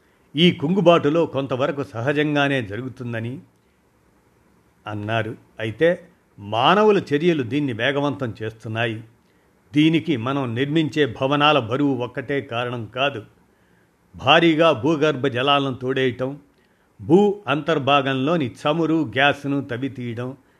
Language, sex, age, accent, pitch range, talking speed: Telugu, male, 50-69, native, 115-150 Hz, 85 wpm